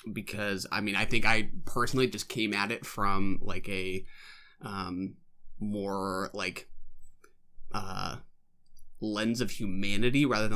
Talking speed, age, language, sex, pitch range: 130 wpm, 20-39, English, male, 95-115 Hz